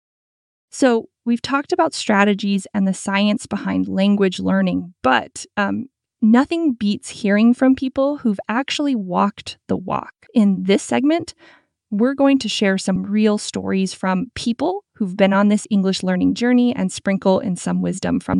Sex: female